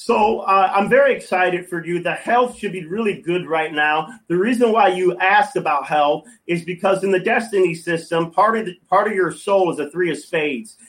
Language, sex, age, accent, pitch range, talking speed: English, male, 40-59, American, 170-205 Hz, 220 wpm